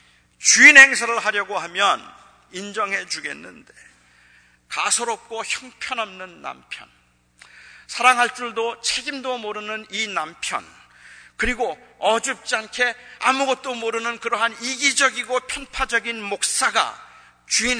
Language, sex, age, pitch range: Korean, male, 40-59, 205-255 Hz